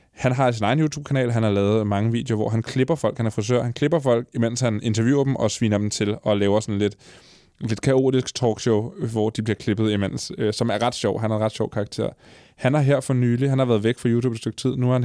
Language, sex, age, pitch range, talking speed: Danish, male, 20-39, 105-125 Hz, 270 wpm